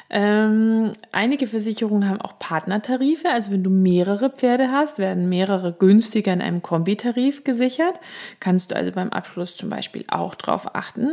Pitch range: 185-235 Hz